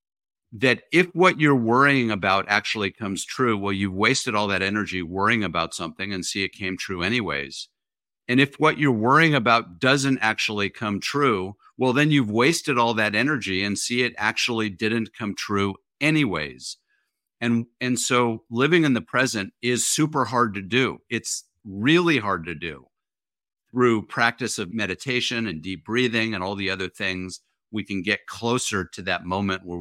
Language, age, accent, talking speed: English, 50-69, American, 175 wpm